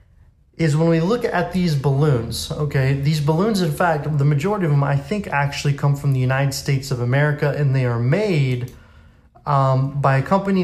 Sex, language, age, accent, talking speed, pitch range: male, English, 30-49, American, 190 wpm, 135-160 Hz